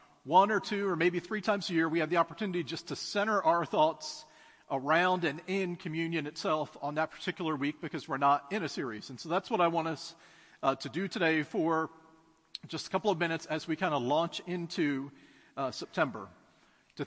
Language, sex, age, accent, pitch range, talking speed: English, male, 40-59, American, 155-200 Hz, 205 wpm